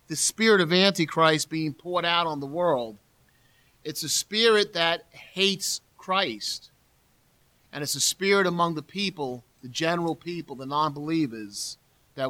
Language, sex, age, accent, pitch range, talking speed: English, male, 40-59, American, 145-175 Hz, 140 wpm